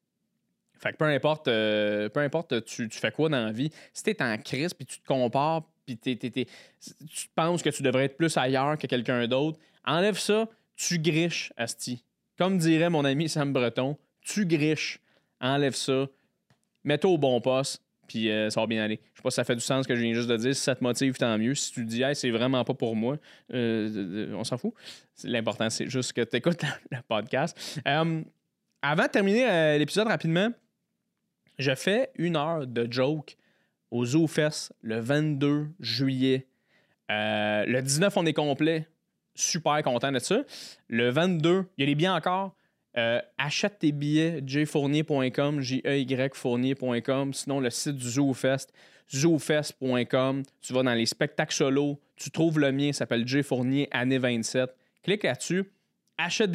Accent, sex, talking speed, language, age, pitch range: Canadian, male, 185 wpm, French, 20-39, 125-160 Hz